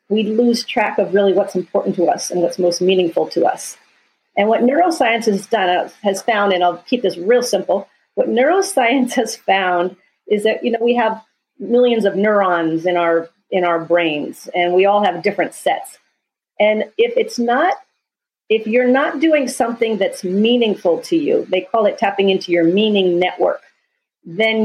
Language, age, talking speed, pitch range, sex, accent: English, 40-59, 180 wpm, 185-240 Hz, female, American